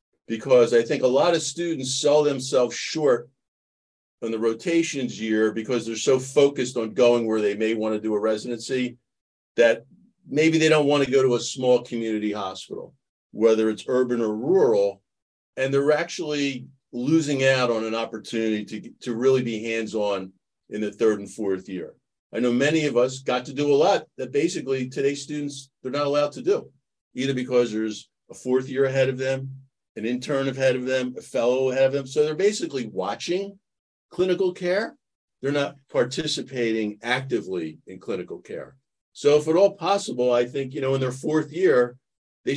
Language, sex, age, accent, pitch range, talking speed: English, male, 50-69, American, 110-145 Hz, 180 wpm